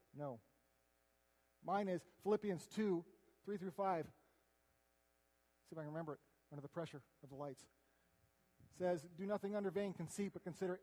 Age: 40-59